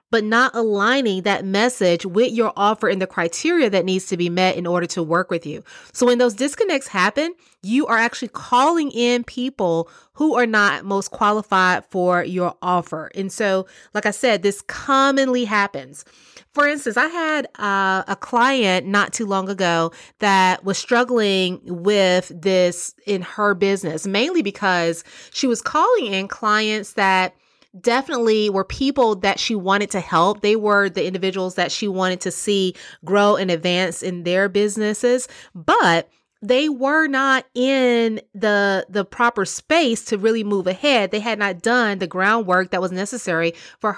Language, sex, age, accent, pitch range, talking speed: English, female, 30-49, American, 185-245 Hz, 165 wpm